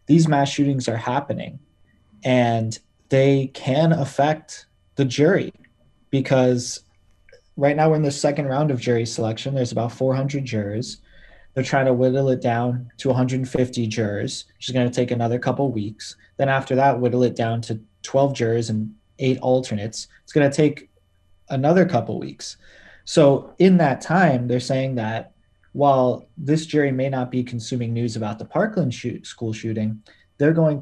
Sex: male